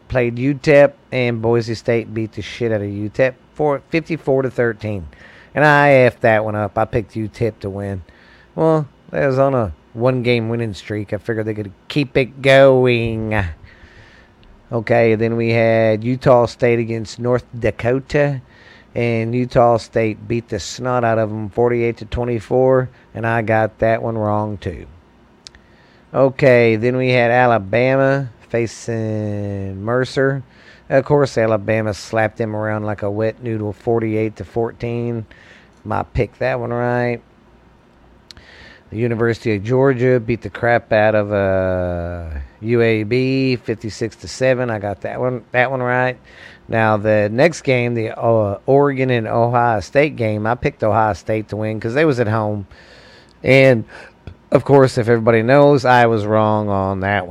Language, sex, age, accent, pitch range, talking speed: English, male, 40-59, American, 105-125 Hz, 155 wpm